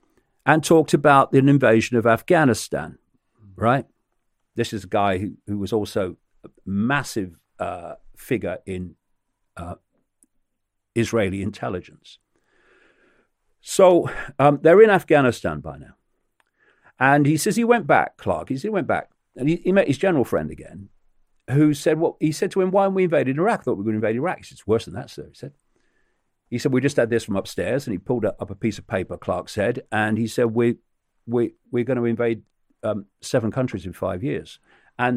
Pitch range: 95-130 Hz